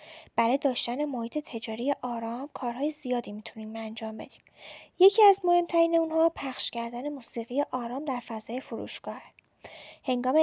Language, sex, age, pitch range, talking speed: Persian, female, 10-29, 230-290 Hz, 125 wpm